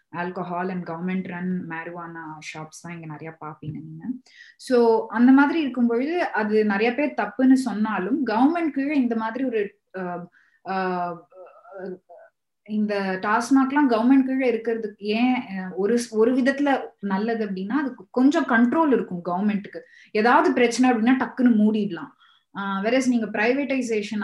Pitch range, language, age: 170-230 Hz, Tamil, 20-39